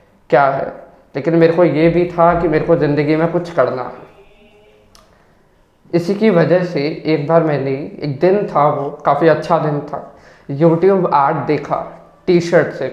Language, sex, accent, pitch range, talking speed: Hindi, male, native, 145-175 Hz, 165 wpm